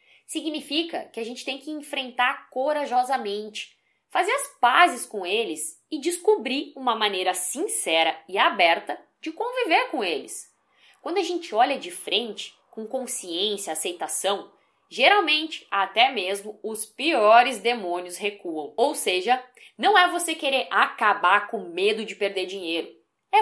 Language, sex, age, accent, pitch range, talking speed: Portuguese, female, 20-39, Brazilian, 205-325 Hz, 140 wpm